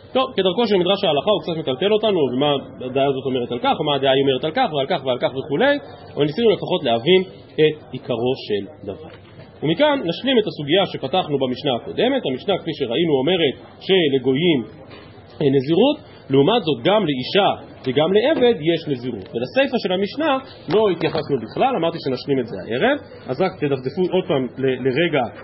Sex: male